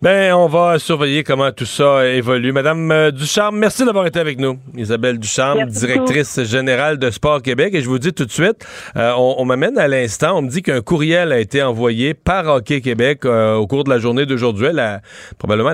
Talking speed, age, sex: 210 wpm, 40-59, male